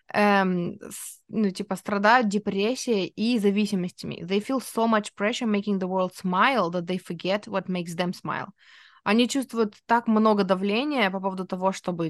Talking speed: 80 wpm